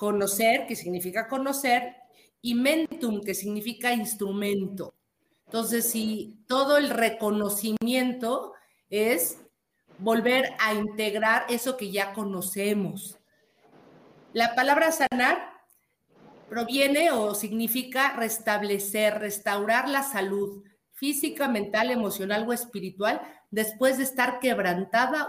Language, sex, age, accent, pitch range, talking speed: Spanish, female, 40-59, Mexican, 205-250 Hz, 95 wpm